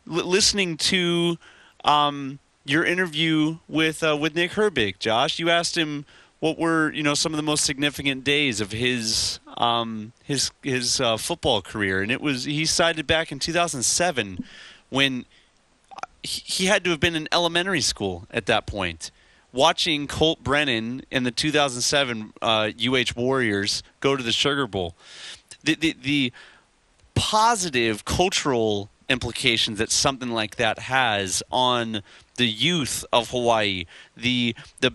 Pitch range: 115-160 Hz